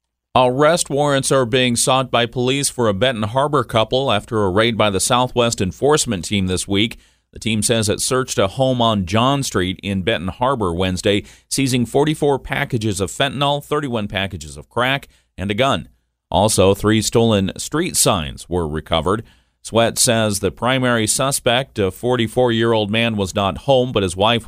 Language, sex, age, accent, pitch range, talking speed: English, male, 40-59, American, 95-120 Hz, 170 wpm